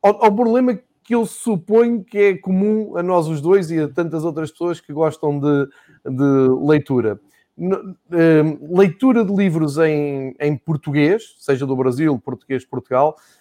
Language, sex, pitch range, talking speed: Portuguese, male, 145-185 Hz, 150 wpm